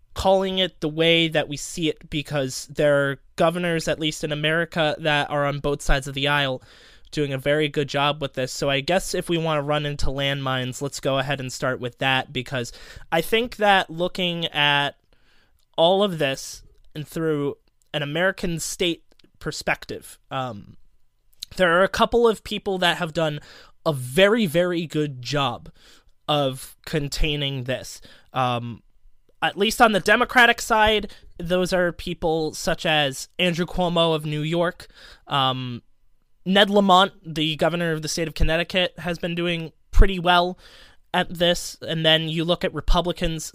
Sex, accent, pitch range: male, American, 145-175 Hz